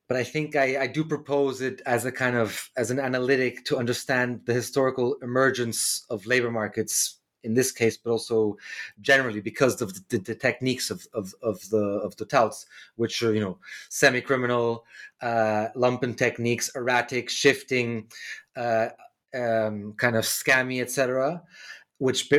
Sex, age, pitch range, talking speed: male, 30-49, 110-130 Hz, 145 wpm